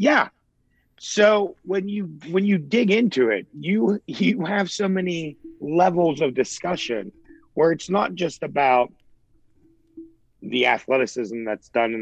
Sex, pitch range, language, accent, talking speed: male, 115-170 Hz, English, American, 135 wpm